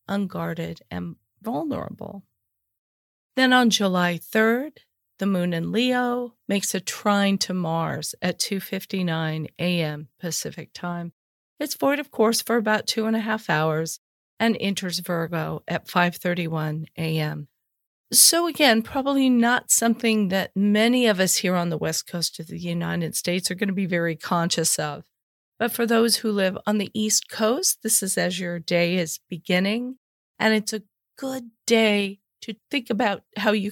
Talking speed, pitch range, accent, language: 160 wpm, 175-230 Hz, American, English